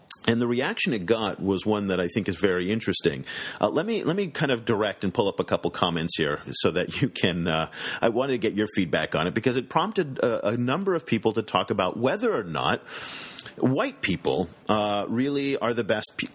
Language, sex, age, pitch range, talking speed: English, male, 40-59, 95-130 Hz, 235 wpm